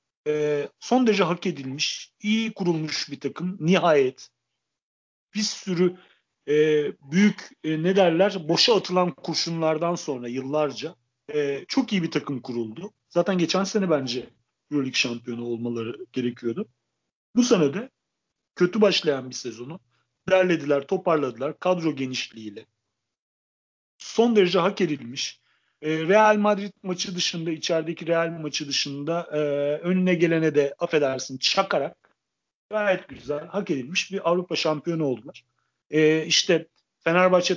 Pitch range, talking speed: 145-185 Hz, 120 wpm